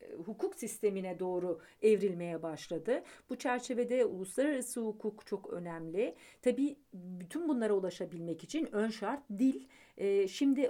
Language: Turkish